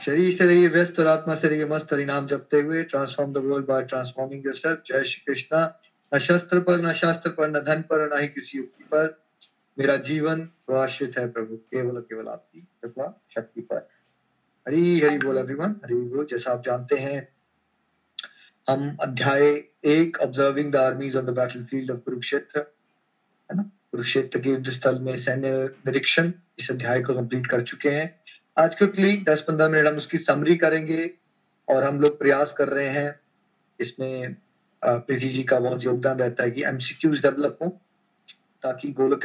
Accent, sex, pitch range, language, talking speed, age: native, male, 130-160 Hz, Hindi, 160 wpm, 20-39